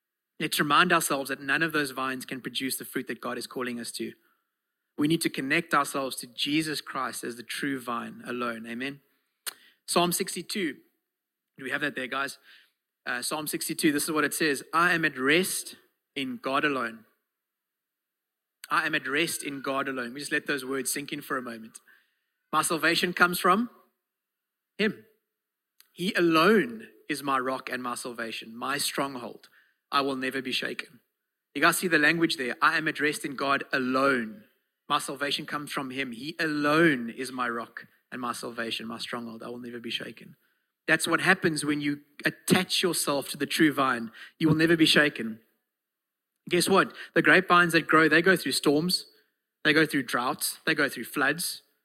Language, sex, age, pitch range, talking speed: English, male, 30-49, 130-165 Hz, 185 wpm